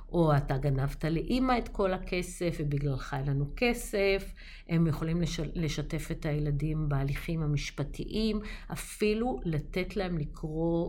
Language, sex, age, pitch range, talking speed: Hebrew, female, 50-69, 150-200 Hz, 115 wpm